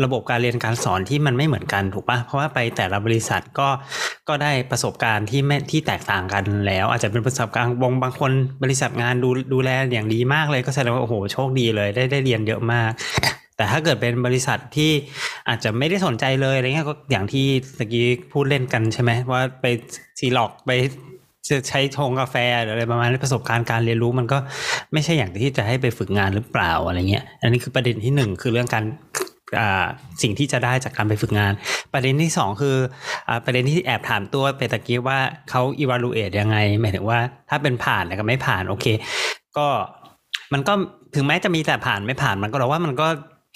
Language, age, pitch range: Thai, 20-39, 115-140 Hz